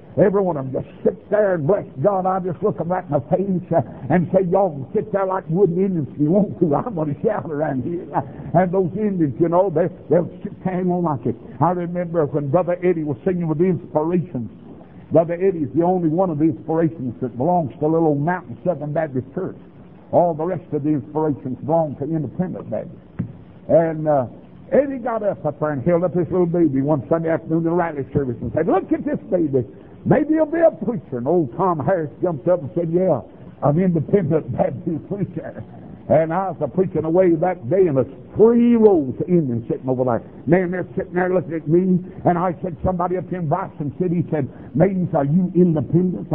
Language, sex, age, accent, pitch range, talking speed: English, male, 60-79, American, 155-185 Hz, 220 wpm